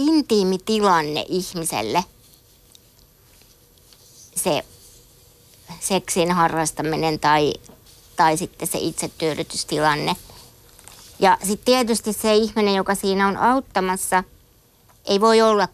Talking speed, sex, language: 90 wpm, female, Finnish